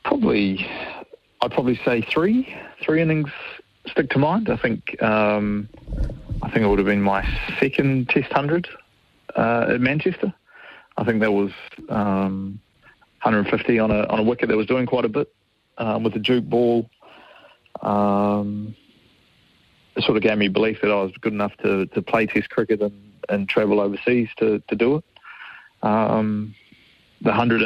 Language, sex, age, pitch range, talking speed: English, male, 40-59, 105-120 Hz, 170 wpm